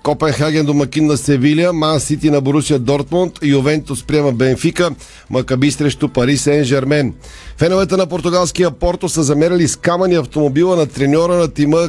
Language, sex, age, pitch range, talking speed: Bulgarian, male, 40-59, 130-155 Hz, 150 wpm